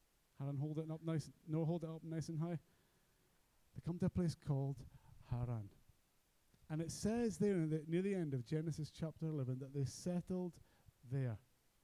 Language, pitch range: English, 120-160 Hz